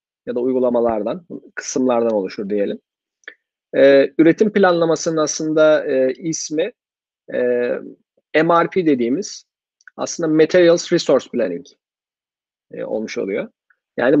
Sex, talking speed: male, 95 wpm